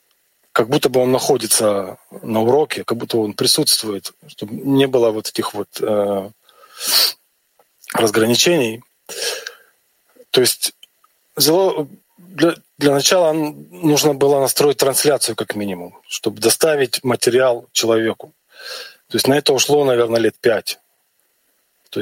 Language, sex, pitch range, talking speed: Russian, male, 120-180 Hz, 115 wpm